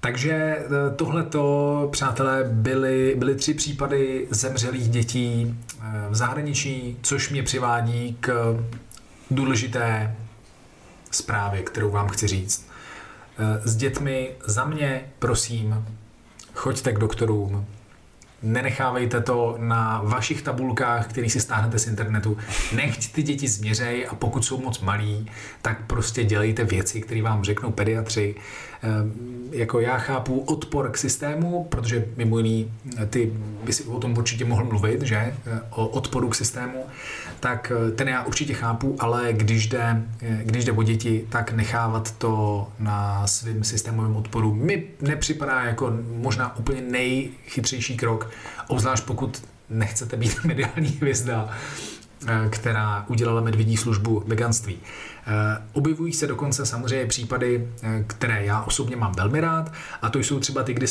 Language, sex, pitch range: Czech, male, 110-130 Hz